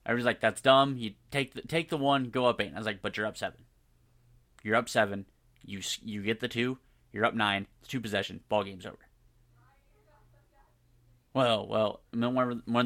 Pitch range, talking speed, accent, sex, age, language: 120-130 Hz, 185 wpm, American, male, 30-49, English